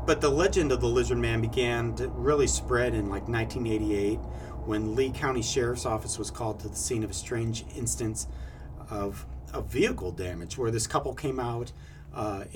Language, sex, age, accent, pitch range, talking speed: English, male, 40-59, American, 100-125 Hz, 180 wpm